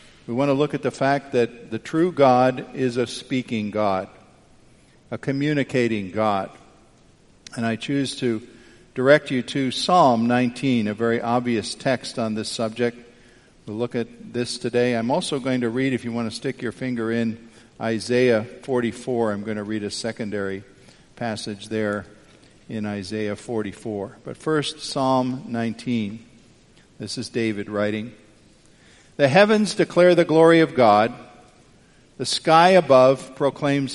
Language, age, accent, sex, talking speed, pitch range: English, 50-69, American, male, 150 wpm, 115-145 Hz